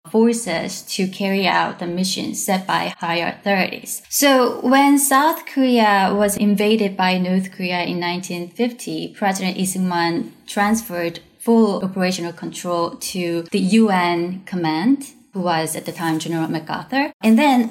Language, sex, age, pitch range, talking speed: English, female, 20-39, 170-215 Hz, 135 wpm